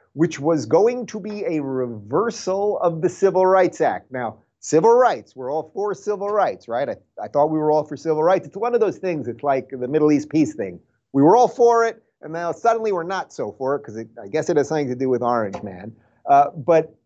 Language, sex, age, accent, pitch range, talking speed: English, male, 30-49, American, 120-175 Hz, 245 wpm